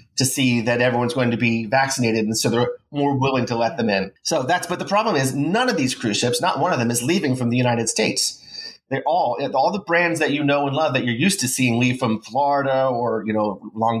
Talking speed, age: 255 wpm, 30-49